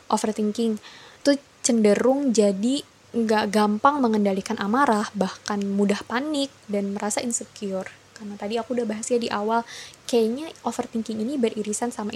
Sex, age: female, 20-39